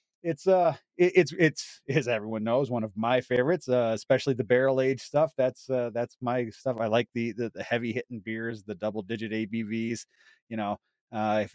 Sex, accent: male, American